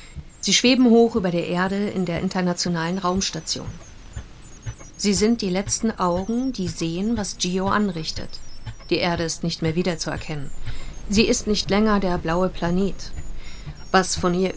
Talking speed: 150 wpm